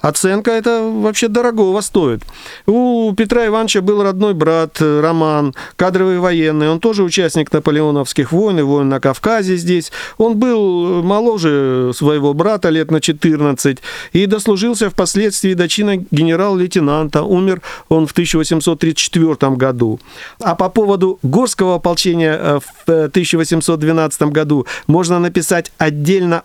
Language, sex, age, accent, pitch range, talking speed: Russian, male, 50-69, native, 155-195 Hz, 120 wpm